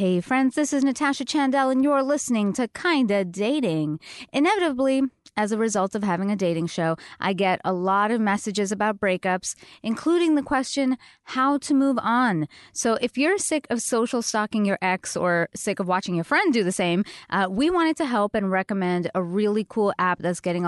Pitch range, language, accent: 175-230 Hz, English, American